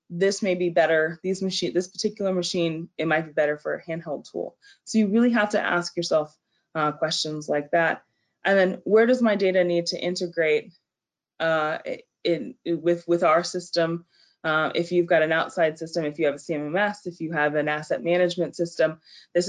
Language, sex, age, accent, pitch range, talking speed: English, female, 20-39, American, 160-185 Hz, 195 wpm